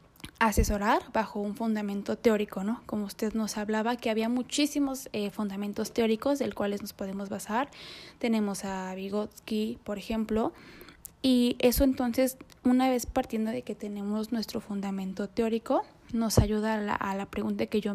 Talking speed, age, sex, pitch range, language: 155 wpm, 10-29, female, 210-240 Hz, Spanish